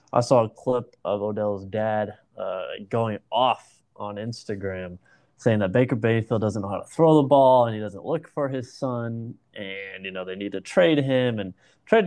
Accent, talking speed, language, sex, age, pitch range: American, 200 wpm, English, male, 20-39, 100-125 Hz